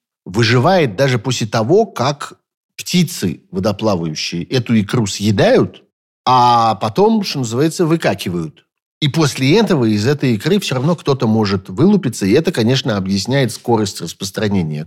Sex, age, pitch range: male, 50-69, 100-145 Hz